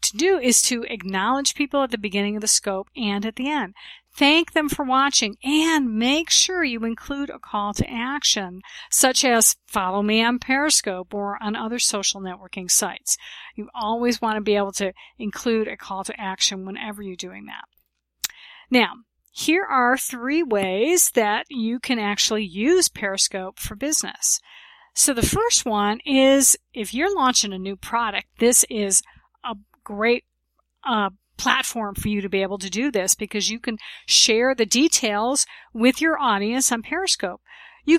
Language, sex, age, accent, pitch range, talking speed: English, female, 50-69, American, 210-275 Hz, 165 wpm